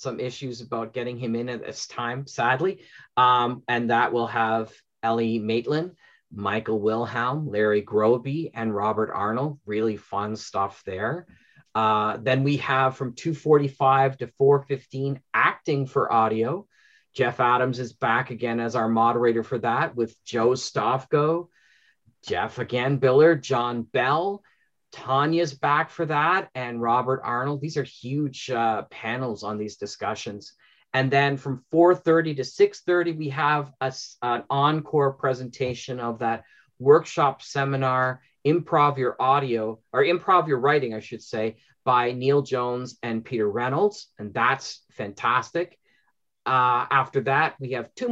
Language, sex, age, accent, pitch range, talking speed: English, male, 40-59, American, 115-145 Hz, 140 wpm